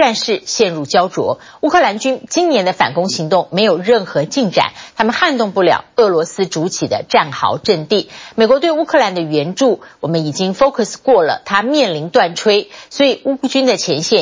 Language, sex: Chinese, female